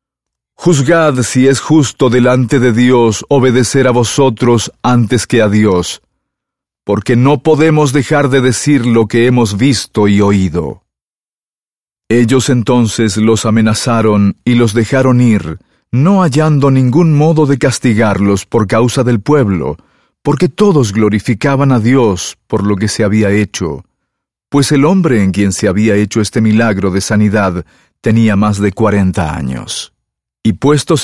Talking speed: 145 wpm